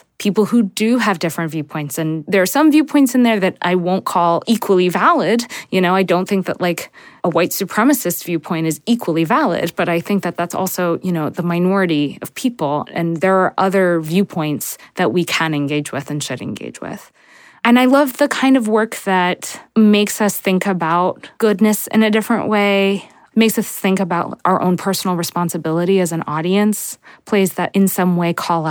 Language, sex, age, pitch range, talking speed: English, female, 20-39, 175-205 Hz, 195 wpm